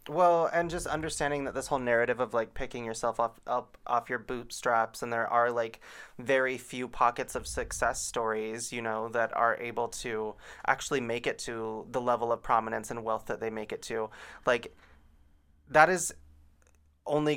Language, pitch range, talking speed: English, 110-130 Hz, 180 wpm